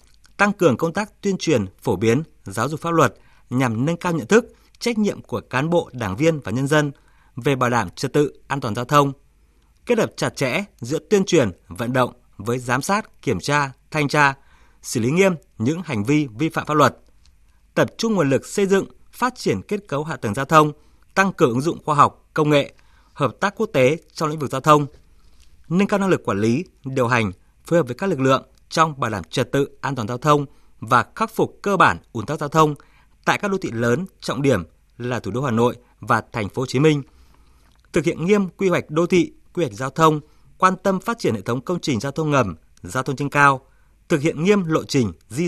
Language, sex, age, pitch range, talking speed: Vietnamese, male, 20-39, 120-165 Hz, 230 wpm